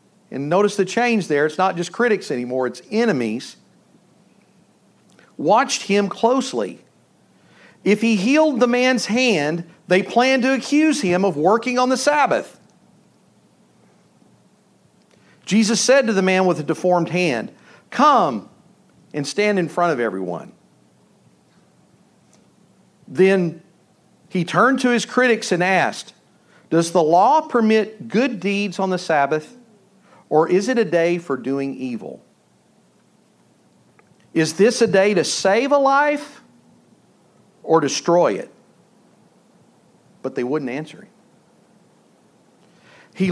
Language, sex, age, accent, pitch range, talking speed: English, male, 50-69, American, 170-235 Hz, 125 wpm